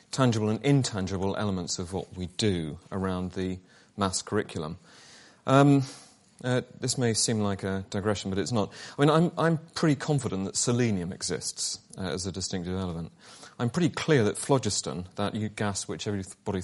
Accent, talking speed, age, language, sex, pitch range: British, 165 wpm, 30-49, English, male, 95-125 Hz